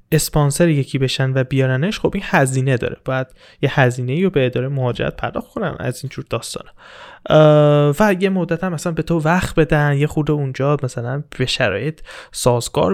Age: 20-39